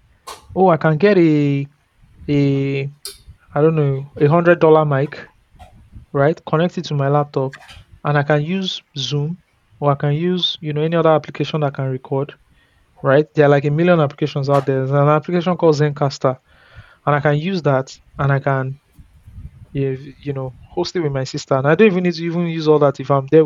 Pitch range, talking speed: 135-160 Hz, 195 wpm